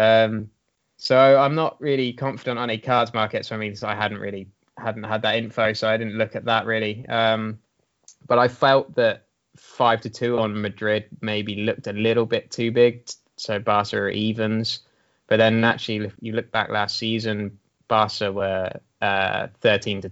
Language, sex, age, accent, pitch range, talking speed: English, male, 20-39, British, 105-120 Hz, 185 wpm